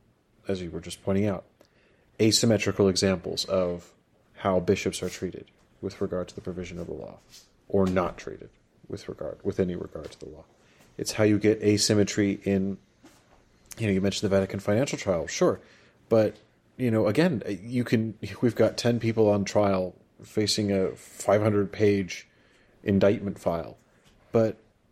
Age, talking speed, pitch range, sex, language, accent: 30-49, 160 wpm, 95-115 Hz, male, English, American